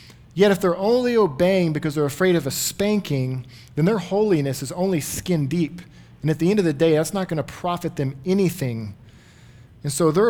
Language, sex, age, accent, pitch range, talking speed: English, male, 40-59, American, 140-190 Hz, 205 wpm